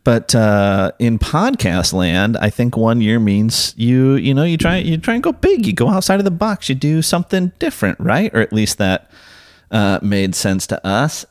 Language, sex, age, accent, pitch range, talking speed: English, male, 30-49, American, 90-110 Hz, 210 wpm